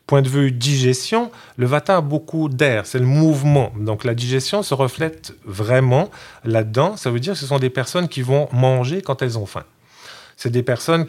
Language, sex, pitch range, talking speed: French, male, 110-140 Hz, 200 wpm